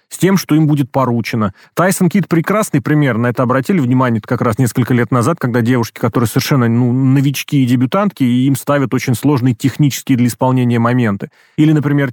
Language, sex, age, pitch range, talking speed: Russian, male, 30-49, 120-145 Hz, 185 wpm